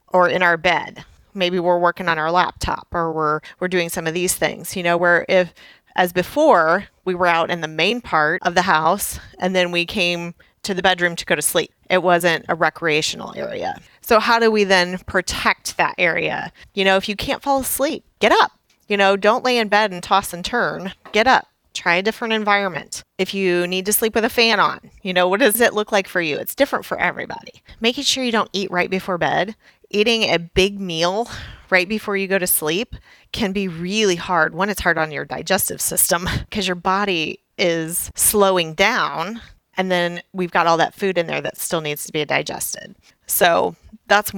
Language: English